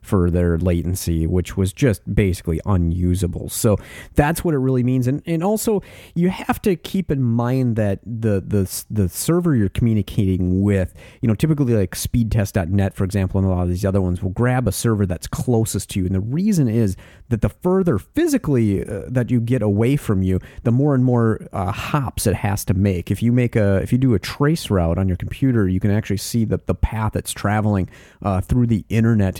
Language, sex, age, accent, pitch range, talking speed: English, male, 40-59, American, 95-120 Hz, 210 wpm